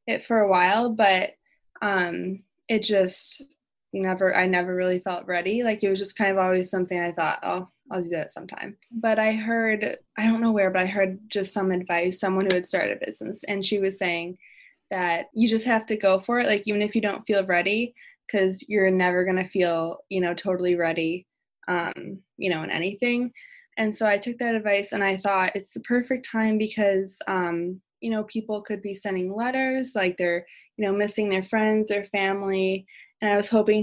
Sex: female